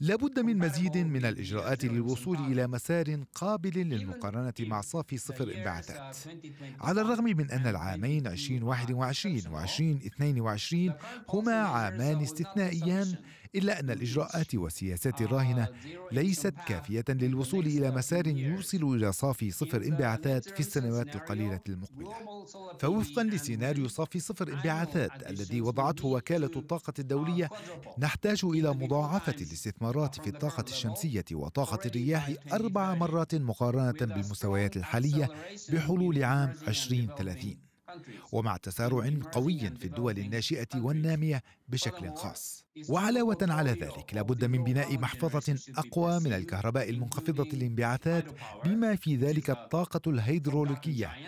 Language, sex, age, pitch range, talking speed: Arabic, male, 40-59, 120-165 Hz, 110 wpm